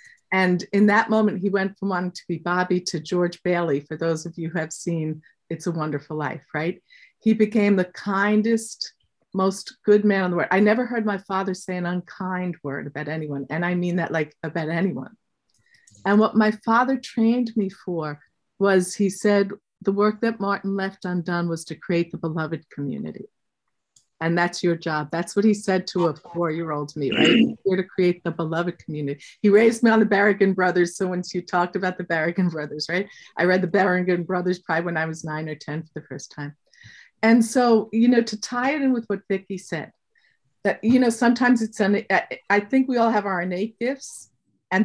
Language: English